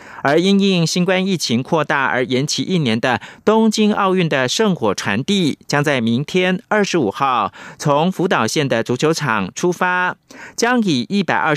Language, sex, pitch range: Chinese, male, 145-195 Hz